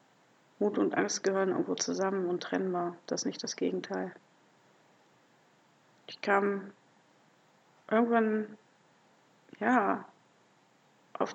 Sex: female